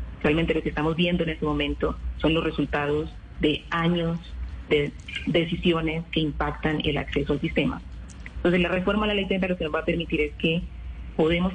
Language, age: Spanish, 30-49